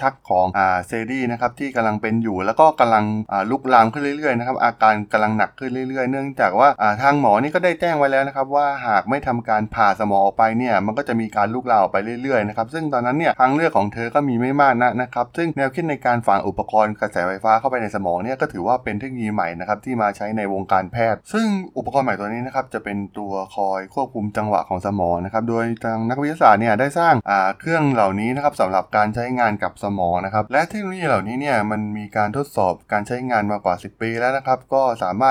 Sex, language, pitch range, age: male, Thai, 105-130 Hz, 20-39